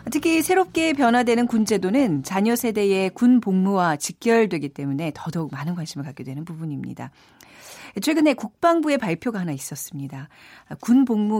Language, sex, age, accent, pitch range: Korean, female, 40-59, native, 160-265 Hz